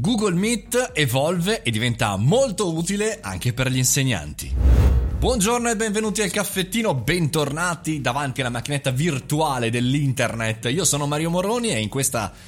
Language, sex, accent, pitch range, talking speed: Italian, male, native, 110-160 Hz, 140 wpm